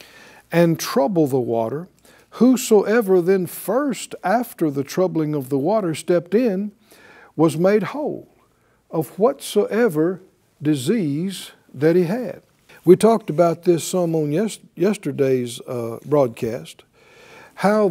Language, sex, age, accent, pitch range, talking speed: English, male, 60-79, American, 150-205 Hz, 110 wpm